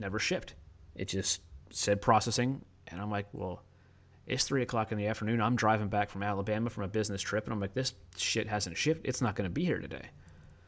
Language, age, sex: English, 30-49, male